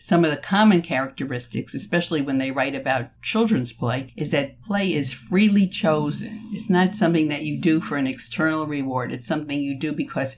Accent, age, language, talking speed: American, 50-69, English, 190 wpm